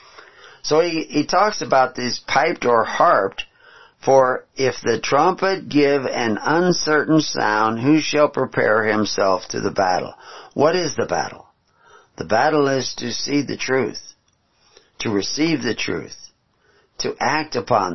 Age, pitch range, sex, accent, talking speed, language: 50-69, 115-155 Hz, male, American, 140 wpm, English